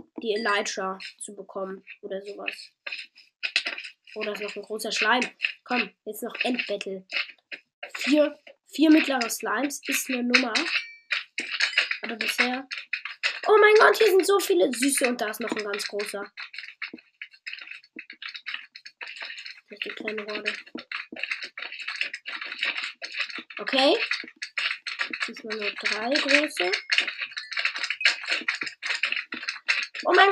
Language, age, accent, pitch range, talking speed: German, 20-39, German, 230-310 Hz, 95 wpm